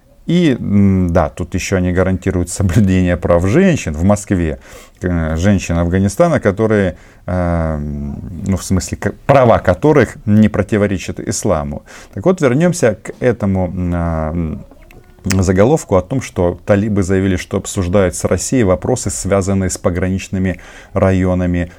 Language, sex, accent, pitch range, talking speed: Russian, male, native, 90-105 Hz, 115 wpm